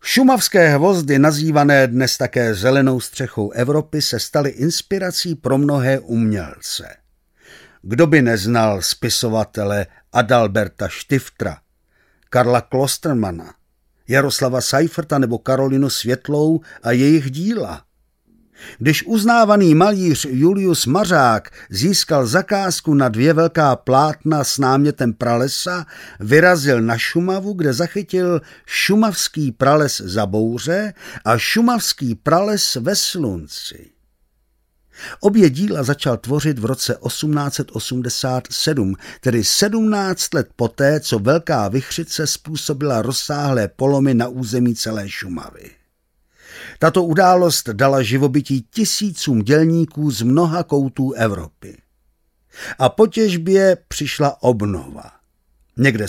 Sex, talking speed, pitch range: male, 100 wpm, 120-170 Hz